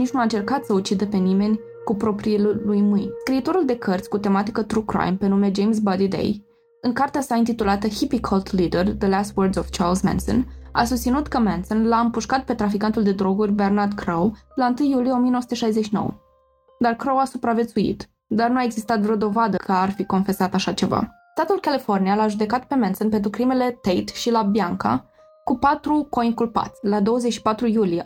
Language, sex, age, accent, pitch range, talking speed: Romanian, female, 20-39, native, 200-235 Hz, 185 wpm